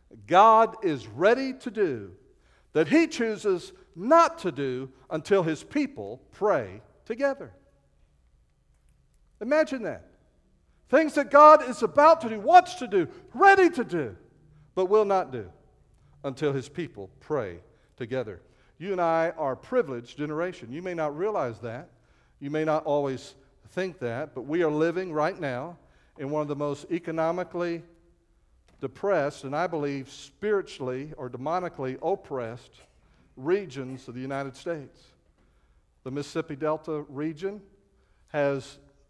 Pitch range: 135-180 Hz